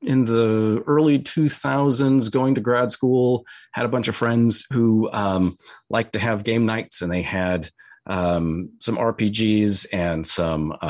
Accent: American